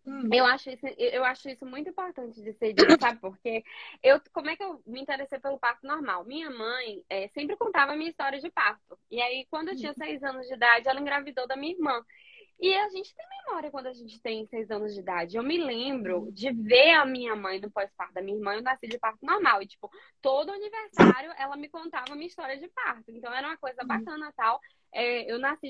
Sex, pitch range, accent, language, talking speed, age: female, 235-335 Hz, Brazilian, Portuguese, 230 wpm, 10-29